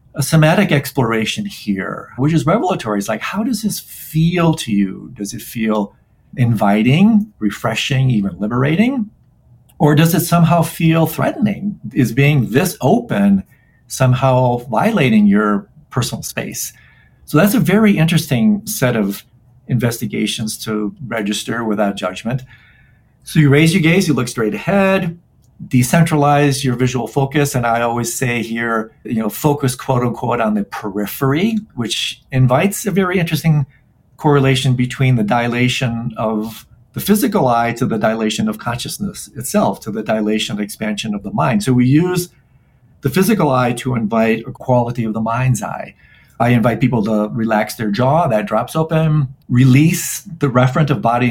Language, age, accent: English, 50-69, American